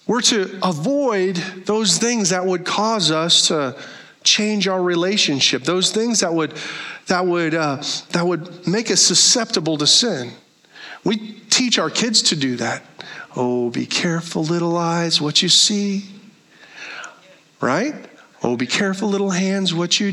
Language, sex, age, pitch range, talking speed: English, male, 40-59, 170-235 Hz, 150 wpm